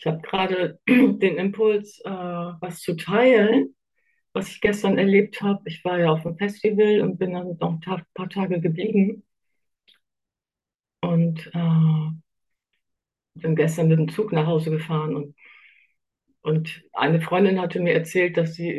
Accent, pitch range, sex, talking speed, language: German, 155-185 Hz, female, 150 wpm, German